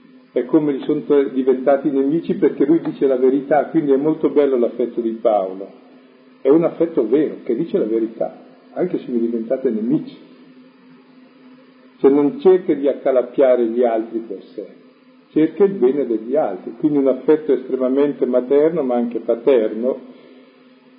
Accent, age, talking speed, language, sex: native, 50-69, 150 wpm, Italian, male